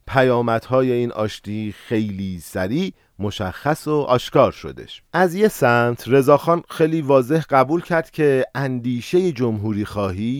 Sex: male